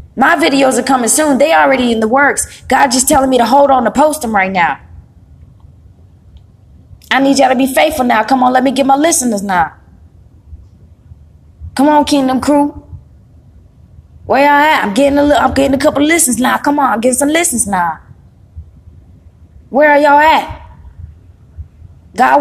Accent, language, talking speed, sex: American, English, 170 wpm, female